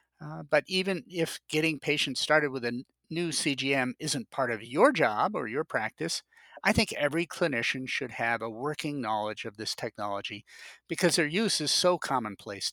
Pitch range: 120-160 Hz